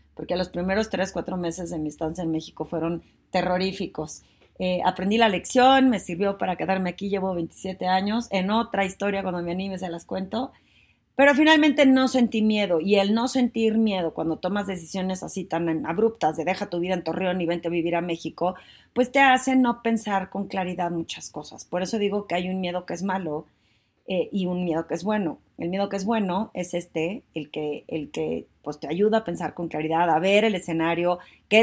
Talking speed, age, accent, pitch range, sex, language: 205 wpm, 30-49, Mexican, 170-205 Hz, female, Spanish